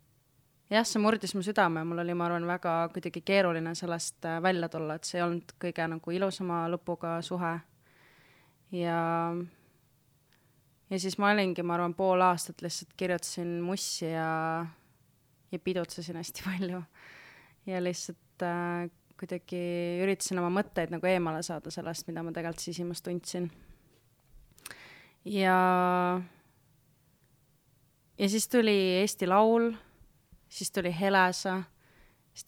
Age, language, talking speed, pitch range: 20-39, English, 125 wpm, 160-185 Hz